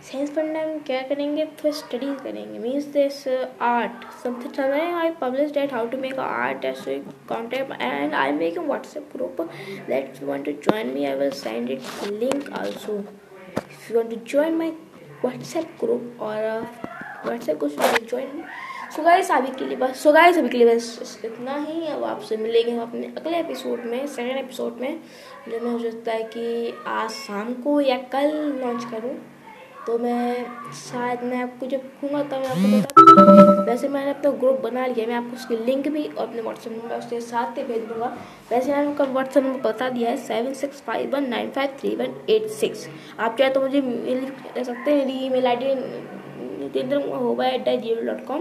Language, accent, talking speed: Hindi, native, 130 wpm